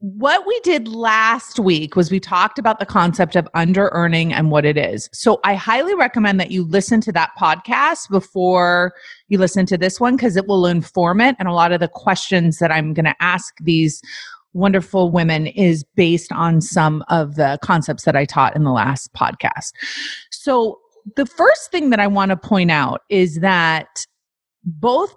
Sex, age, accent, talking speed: female, 30-49, American, 190 wpm